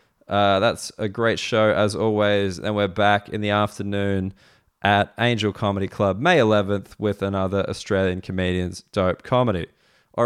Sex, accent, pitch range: male, Australian, 105-125 Hz